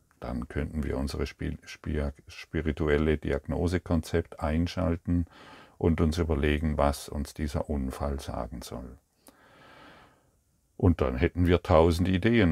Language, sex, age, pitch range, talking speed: German, male, 50-69, 70-80 Hz, 105 wpm